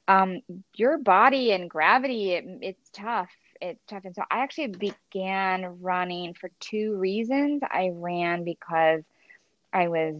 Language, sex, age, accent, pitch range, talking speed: English, female, 20-39, American, 170-215 Hz, 135 wpm